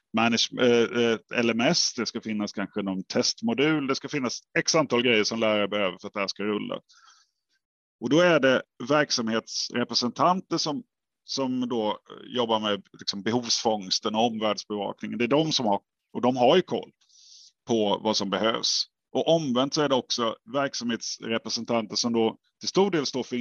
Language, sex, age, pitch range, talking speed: Swedish, male, 30-49, 110-140 Hz, 165 wpm